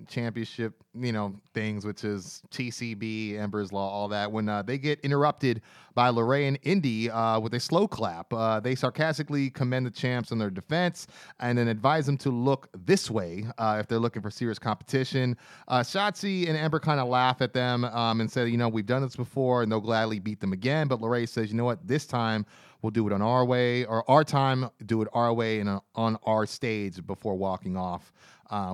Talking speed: 215 wpm